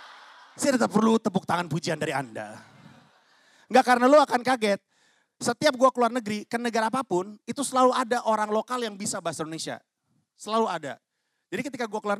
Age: 30-49